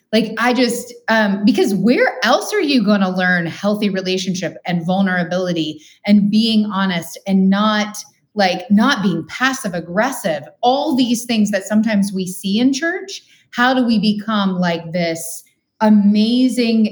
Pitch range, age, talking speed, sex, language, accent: 175-220 Hz, 30-49, 150 wpm, female, English, American